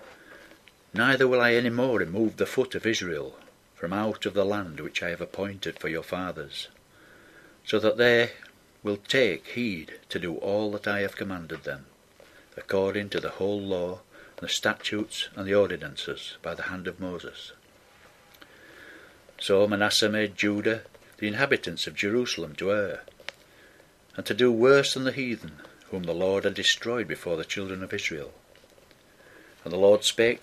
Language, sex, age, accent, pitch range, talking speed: English, male, 60-79, British, 95-120 Hz, 165 wpm